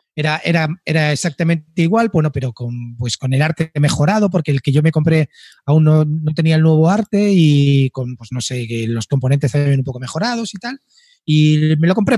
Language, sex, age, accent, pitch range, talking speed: Spanish, male, 30-49, Spanish, 145-185 Hz, 210 wpm